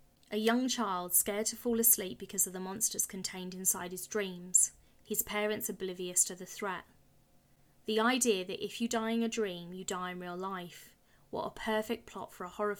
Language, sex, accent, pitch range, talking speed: English, female, British, 185-220 Hz, 195 wpm